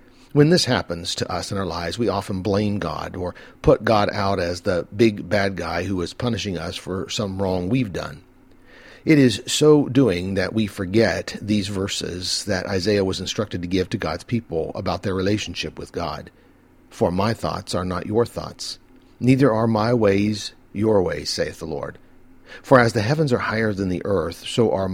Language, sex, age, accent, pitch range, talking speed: English, male, 50-69, American, 90-115 Hz, 190 wpm